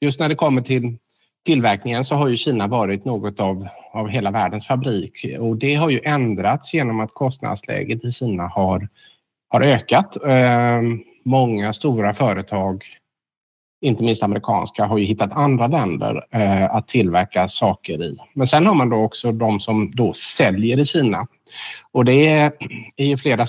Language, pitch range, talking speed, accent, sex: Swedish, 105-135 Hz, 160 wpm, Norwegian, male